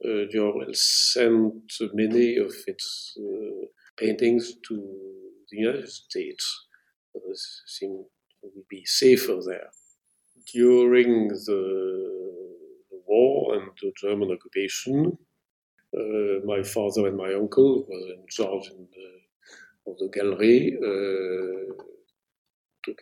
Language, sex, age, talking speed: English, male, 50-69, 110 wpm